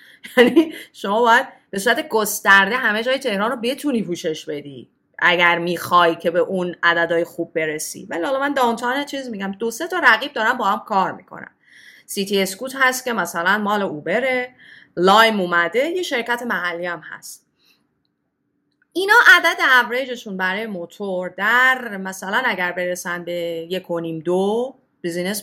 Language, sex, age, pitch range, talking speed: Persian, female, 30-49, 170-245 Hz, 150 wpm